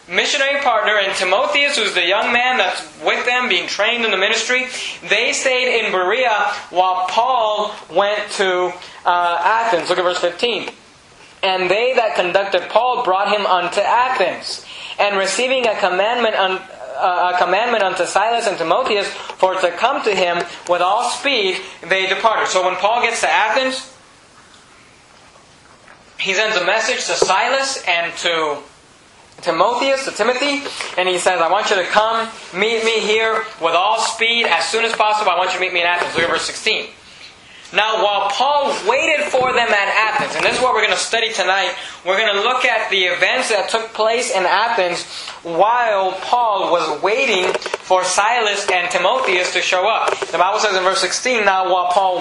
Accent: American